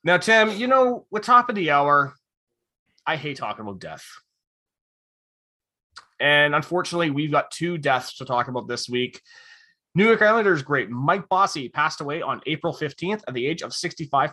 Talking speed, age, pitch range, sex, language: 170 wpm, 20-39, 130-190 Hz, male, English